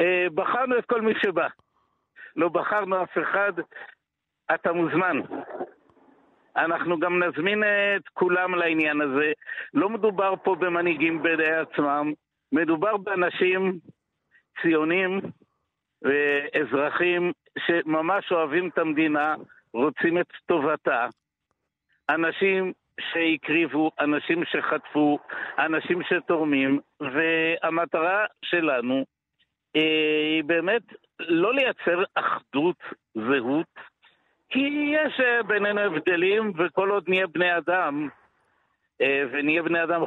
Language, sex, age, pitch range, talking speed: Hebrew, male, 60-79, 155-200 Hz, 95 wpm